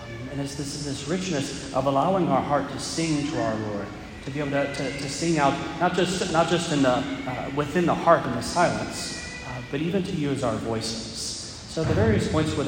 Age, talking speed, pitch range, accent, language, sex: 40-59, 225 wpm, 120-155 Hz, American, English, male